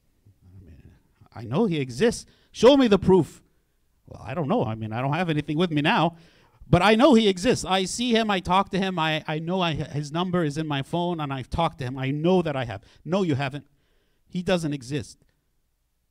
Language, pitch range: English, 120-185 Hz